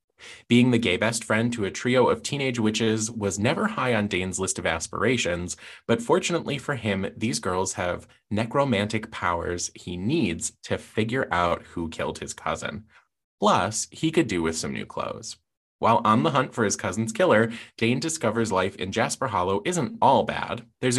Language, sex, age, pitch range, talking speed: English, male, 20-39, 95-125 Hz, 180 wpm